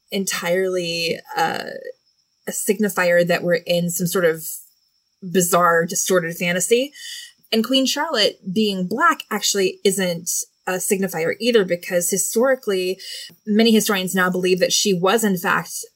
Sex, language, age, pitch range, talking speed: female, English, 20-39, 180-235 Hz, 130 wpm